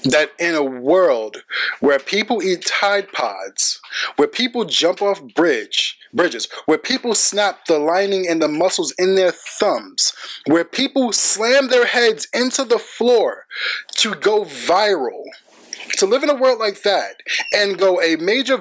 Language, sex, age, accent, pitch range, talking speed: English, male, 20-39, American, 170-260 Hz, 155 wpm